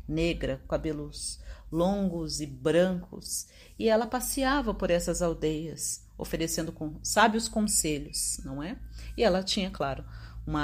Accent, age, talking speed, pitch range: Brazilian, 40-59, 120 wpm, 150-230 Hz